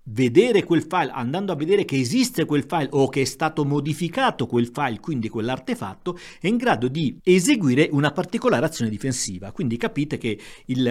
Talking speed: 175 wpm